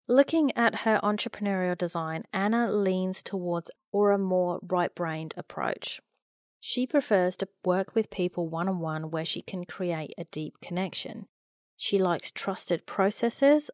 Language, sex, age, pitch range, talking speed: English, female, 30-49, 175-220 Hz, 130 wpm